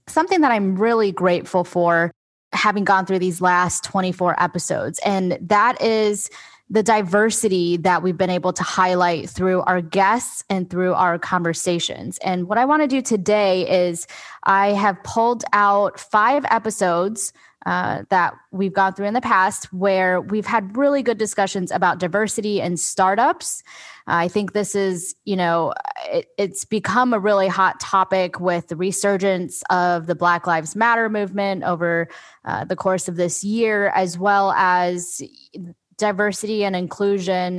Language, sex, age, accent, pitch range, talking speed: English, female, 10-29, American, 180-210 Hz, 155 wpm